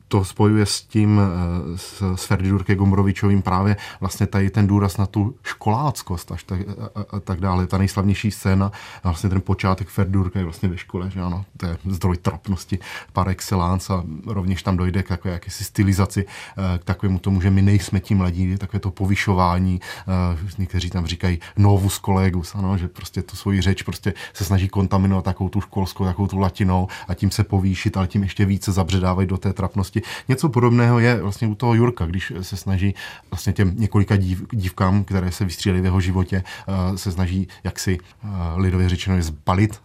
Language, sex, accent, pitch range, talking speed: Czech, male, native, 95-100 Hz, 185 wpm